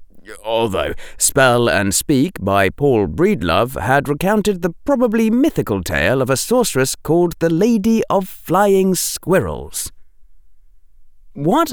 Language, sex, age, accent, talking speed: English, male, 30-49, British, 120 wpm